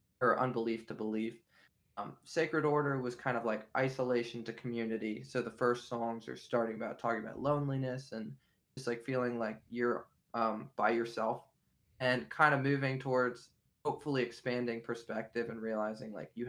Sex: male